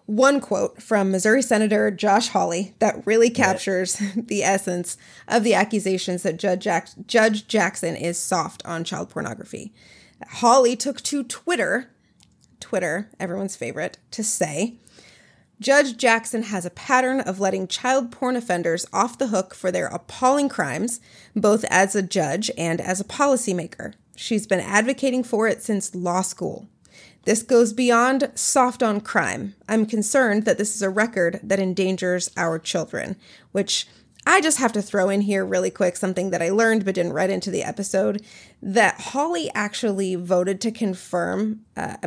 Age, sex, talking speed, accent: 30-49, female, 155 wpm, American